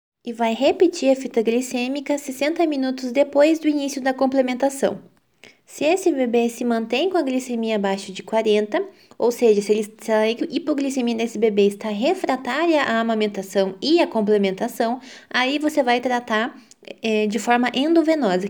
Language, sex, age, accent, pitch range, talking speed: Italian, female, 20-39, Brazilian, 215-290 Hz, 145 wpm